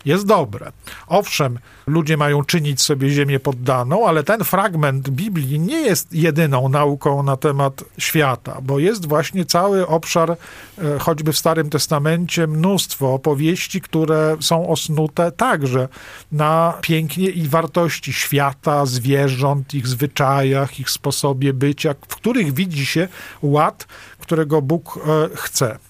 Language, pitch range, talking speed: Polish, 140-170 Hz, 125 wpm